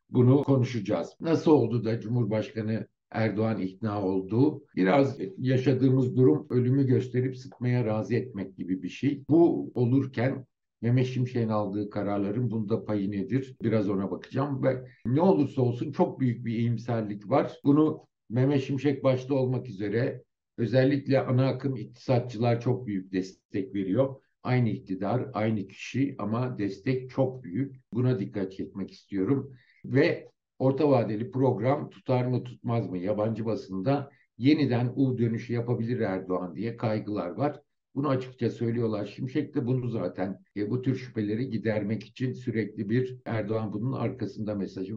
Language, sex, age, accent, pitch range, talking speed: Turkish, male, 60-79, native, 110-135 Hz, 135 wpm